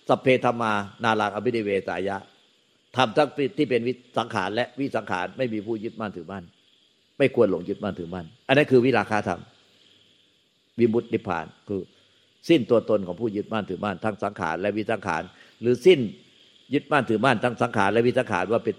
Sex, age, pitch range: male, 60-79, 100-130 Hz